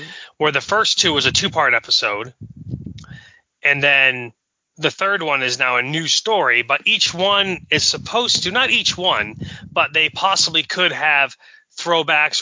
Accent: American